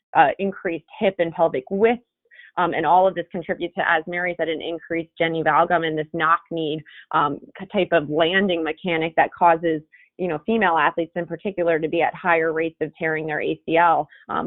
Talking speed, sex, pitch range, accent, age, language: 195 wpm, female, 165-195 Hz, American, 20-39, English